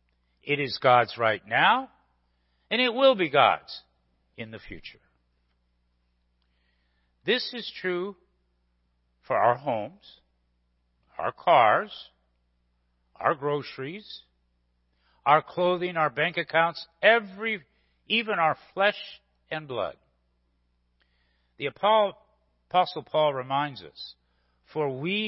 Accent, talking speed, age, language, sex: American, 95 wpm, 60-79, English, male